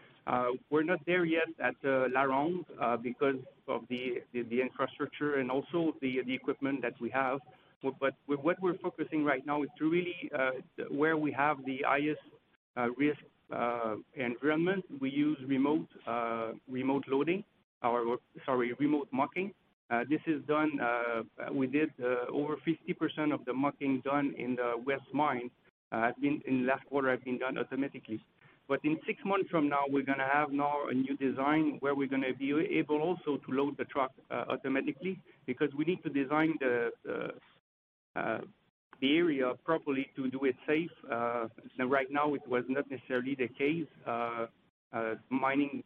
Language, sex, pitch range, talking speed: English, male, 130-155 Hz, 180 wpm